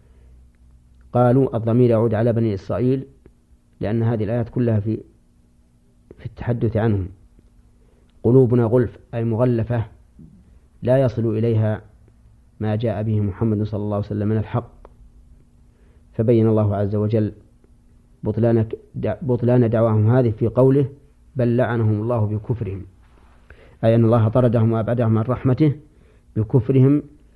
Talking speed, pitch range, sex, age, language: 115 wpm, 90-120 Hz, male, 40-59, Arabic